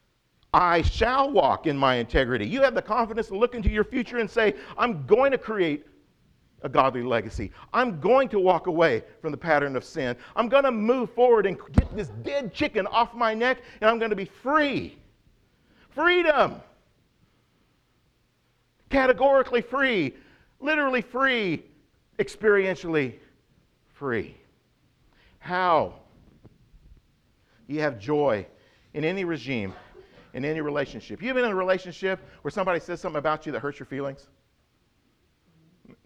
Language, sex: English, male